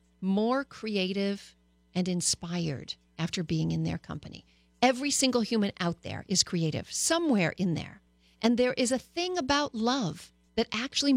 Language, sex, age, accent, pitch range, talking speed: English, female, 40-59, American, 170-255 Hz, 150 wpm